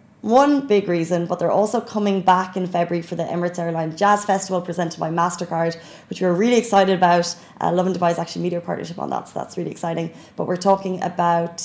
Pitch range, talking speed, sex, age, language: 170-195 Hz, 220 wpm, female, 20-39, Arabic